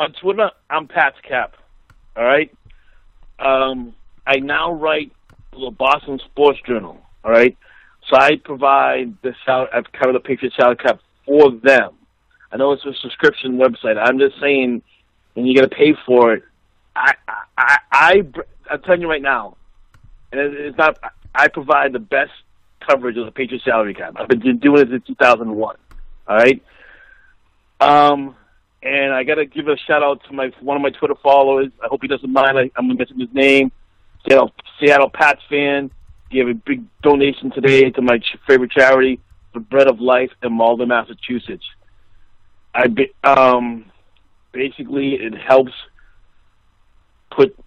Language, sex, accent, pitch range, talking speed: English, male, American, 115-140 Hz, 165 wpm